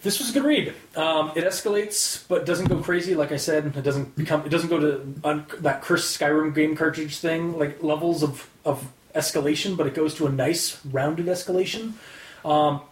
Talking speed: 200 wpm